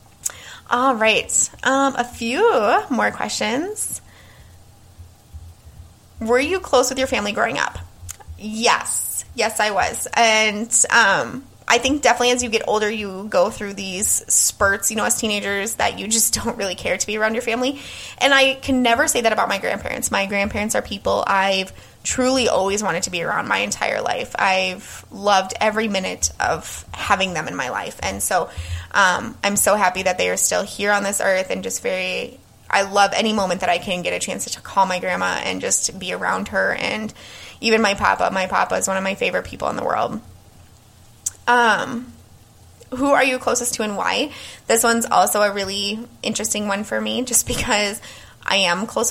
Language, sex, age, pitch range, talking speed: English, female, 20-39, 185-235 Hz, 190 wpm